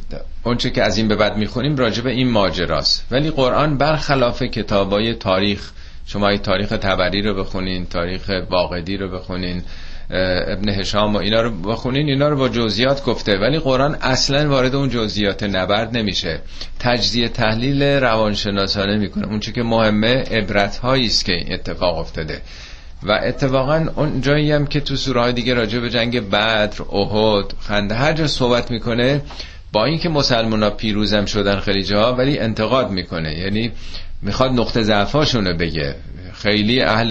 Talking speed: 150 wpm